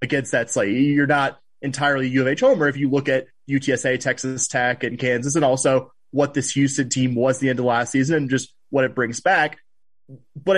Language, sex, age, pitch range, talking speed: English, male, 20-39, 130-145 Hz, 215 wpm